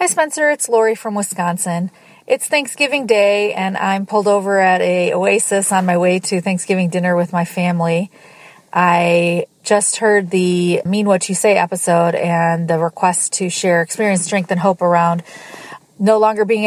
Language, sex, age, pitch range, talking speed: English, female, 30-49, 175-200 Hz, 170 wpm